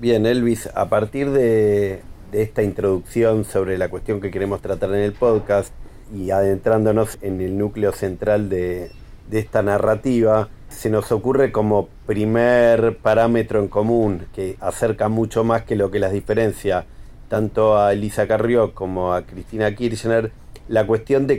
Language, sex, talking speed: Spanish, male, 155 wpm